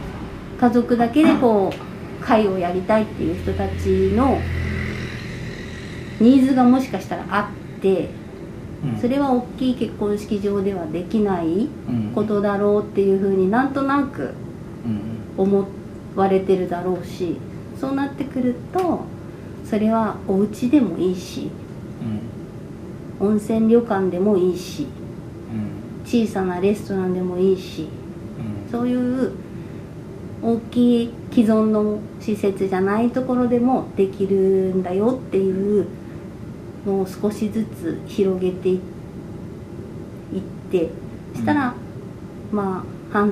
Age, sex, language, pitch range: 40-59, female, Japanese, 180-225 Hz